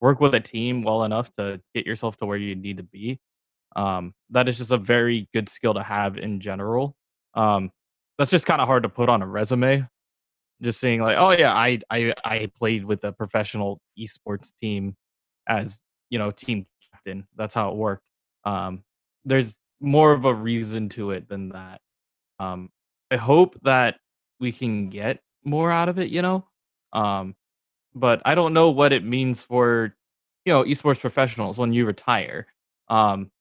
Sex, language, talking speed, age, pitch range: male, English, 180 wpm, 20-39, 105-130 Hz